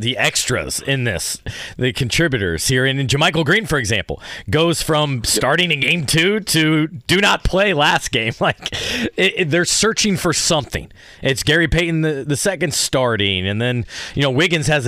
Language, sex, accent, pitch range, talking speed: English, male, American, 110-150 Hz, 180 wpm